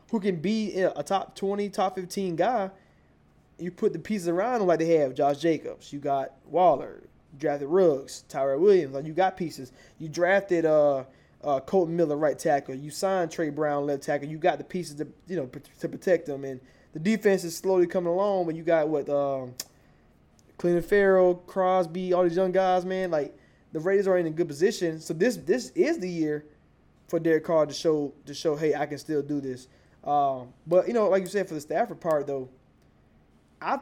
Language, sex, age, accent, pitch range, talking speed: English, male, 20-39, American, 145-185 Hz, 210 wpm